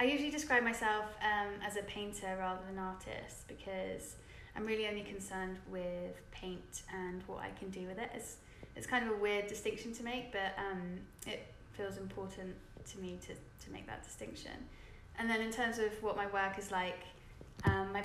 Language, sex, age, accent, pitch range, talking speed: English, female, 20-39, British, 190-210 Hz, 195 wpm